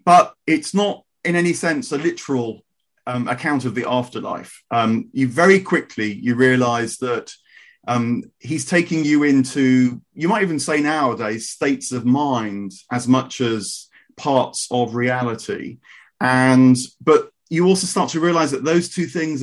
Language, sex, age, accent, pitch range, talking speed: English, male, 30-49, British, 125-160 Hz, 155 wpm